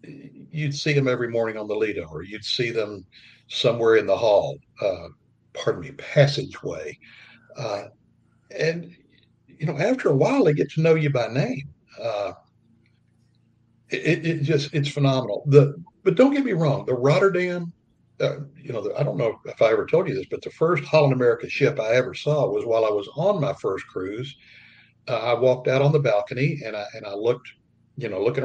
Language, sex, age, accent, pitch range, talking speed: English, male, 60-79, American, 120-165 Hz, 195 wpm